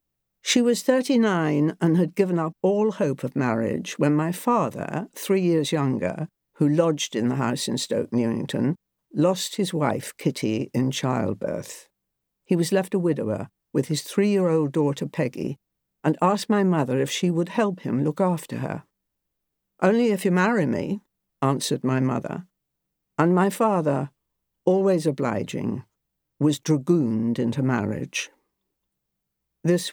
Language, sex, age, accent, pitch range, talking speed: English, female, 60-79, British, 140-185 Hz, 140 wpm